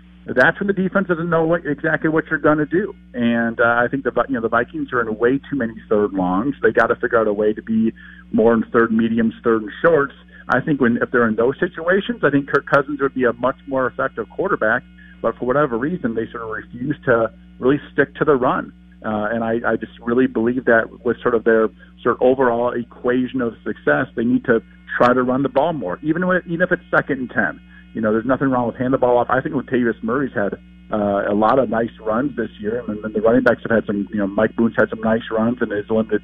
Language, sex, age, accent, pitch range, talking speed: English, male, 50-69, American, 110-135 Hz, 255 wpm